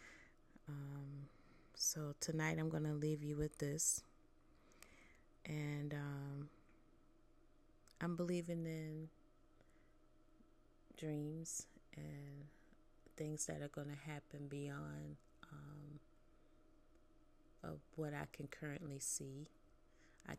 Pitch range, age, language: 135-150 Hz, 30-49, English